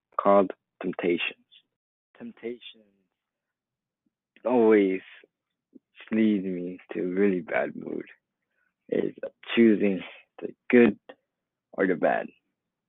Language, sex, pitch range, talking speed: English, male, 100-115 Hz, 85 wpm